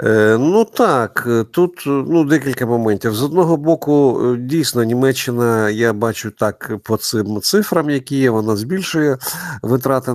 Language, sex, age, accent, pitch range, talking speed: Ukrainian, male, 50-69, native, 105-135 Hz, 130 wpm